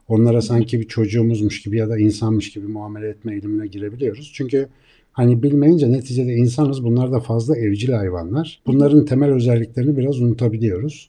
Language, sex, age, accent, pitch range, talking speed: Turkish, male, 60-79, native, 110-135 Hz, 150 wpm